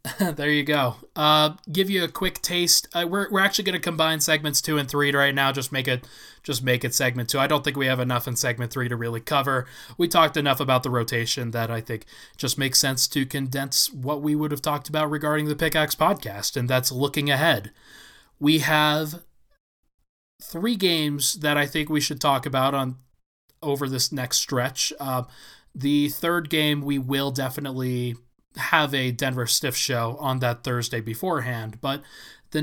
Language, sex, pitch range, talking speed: English, male, 130-155 Hz, 190 wpm